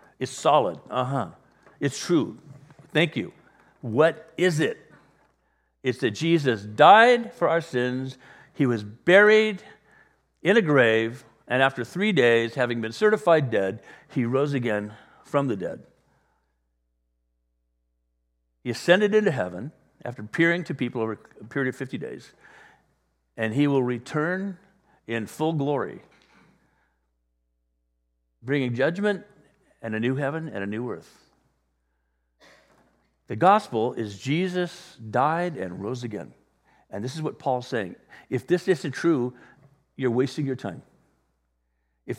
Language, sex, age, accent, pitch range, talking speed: English, male, 60-79, American, 105-160 Hz, 130 wpm